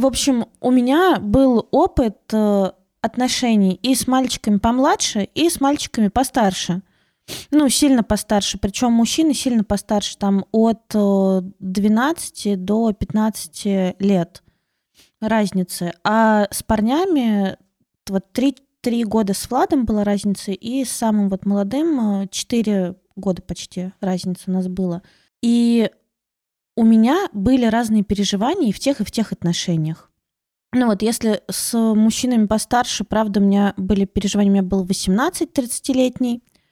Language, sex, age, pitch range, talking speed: Russian, female, 20-39, 195-240 Hz, 130 wpm